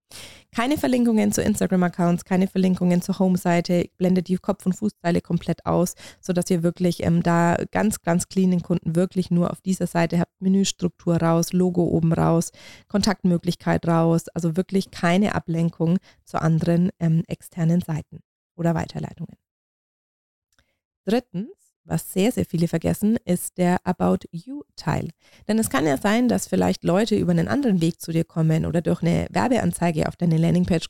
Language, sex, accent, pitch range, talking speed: German, female, German, 165-185 Hz, 155 wpm